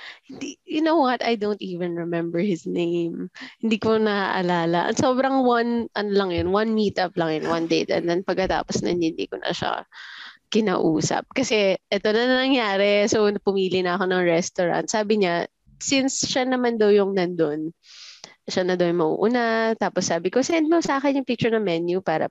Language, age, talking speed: Filipino, 20-39, 180 wpm